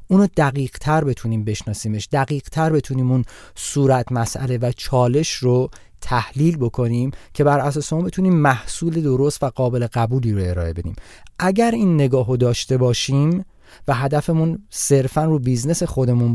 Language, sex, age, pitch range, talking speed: Persian, male, 30-49, 115-150 Hz, 135 wpm